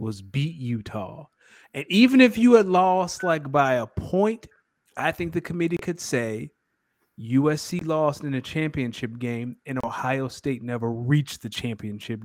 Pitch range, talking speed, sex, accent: 115-150 Hz, 155 wpm, male, American